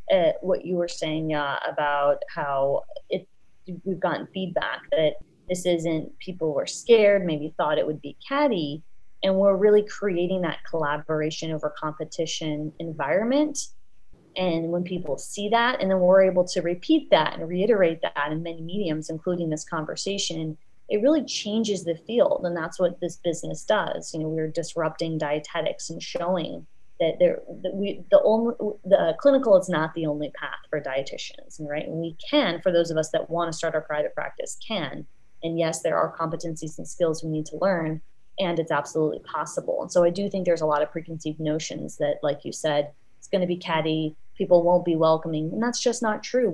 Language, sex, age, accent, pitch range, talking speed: English, female, 30-49, American, 155-200 Hz, 185 wpm